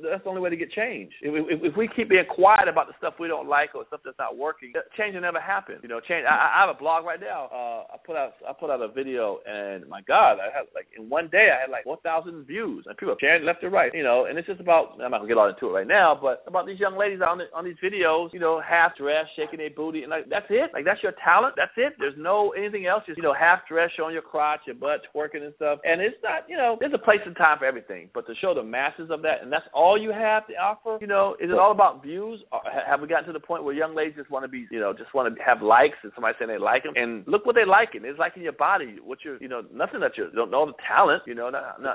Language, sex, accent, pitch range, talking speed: English, male, American, 150-215 Hz, 305 wpm